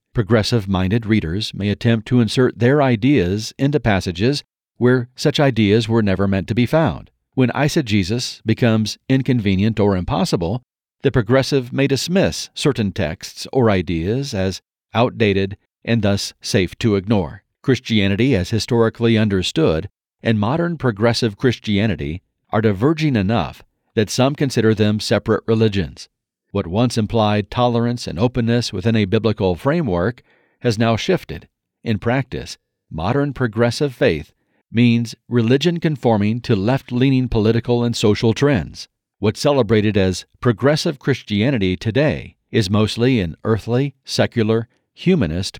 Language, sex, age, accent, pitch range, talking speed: English, male, 50-69, American, 105-130 Hz, 125 wpm